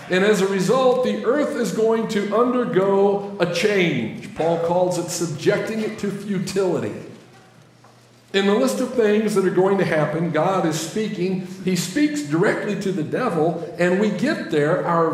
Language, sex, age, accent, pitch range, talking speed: English, male, 50-69, American, 155-210 Hz, 170 wpm